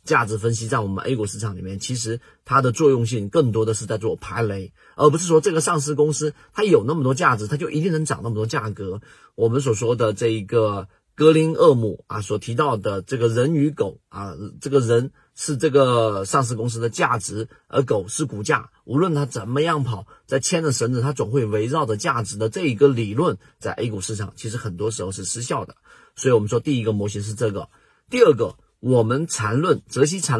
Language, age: Chinese, 40-59